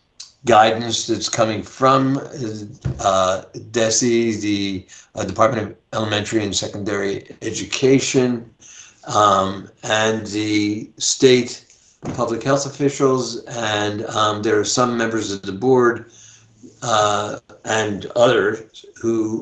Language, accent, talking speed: English, American, 105 wpm